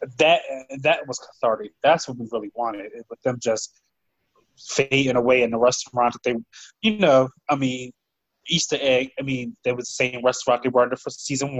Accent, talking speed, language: American, 195 wpm, English